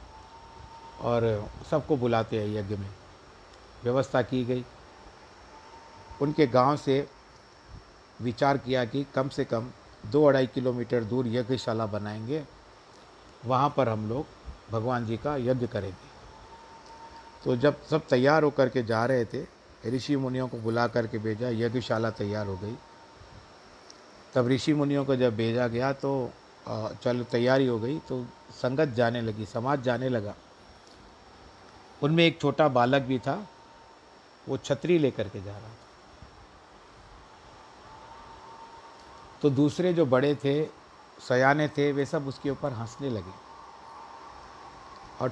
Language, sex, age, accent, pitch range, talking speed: Hindi, male, 50-69, native, 115-140 Hz, 130 wpm